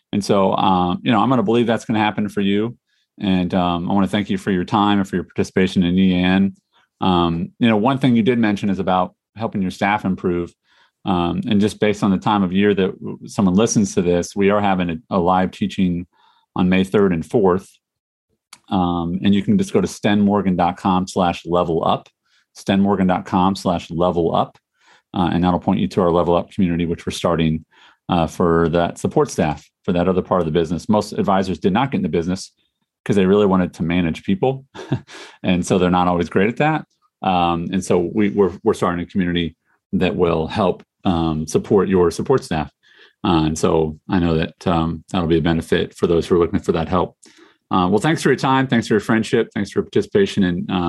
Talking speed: 220 wpm